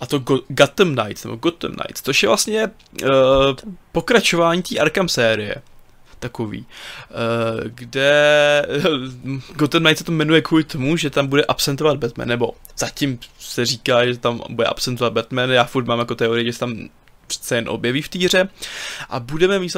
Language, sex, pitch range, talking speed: Czech, male, 120-145 Hz, 170 wpm